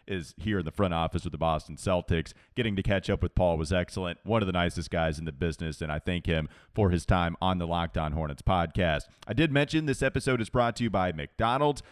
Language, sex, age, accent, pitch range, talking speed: English, male, 30-49, American, 90-120 Hz, 245 wpm